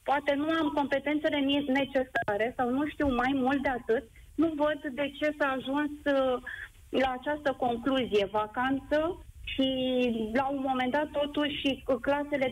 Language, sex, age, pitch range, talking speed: Romanian, female, 30-49, 260-305 Hz, 140 wpm